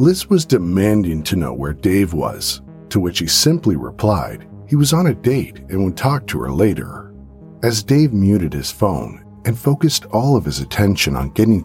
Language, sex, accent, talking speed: English, male, American, 190 wpm